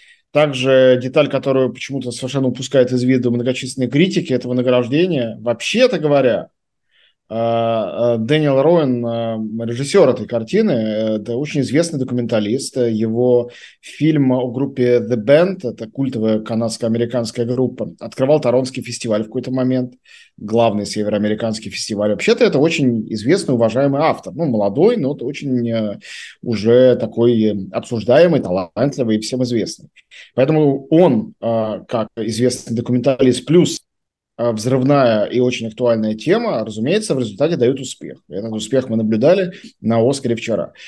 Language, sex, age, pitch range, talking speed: Russian, male, 20-39, 115-140 Hz, 125 wpm